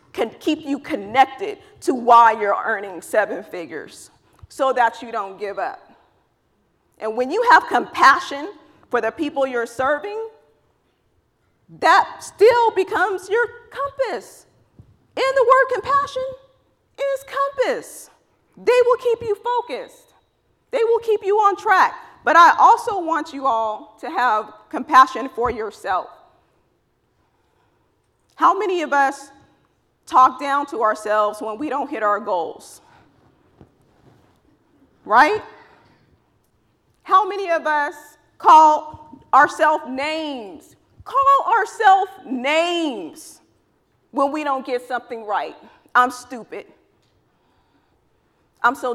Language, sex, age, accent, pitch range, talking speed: English, female, 40-59, American, 250-395 Hz, 115 wpm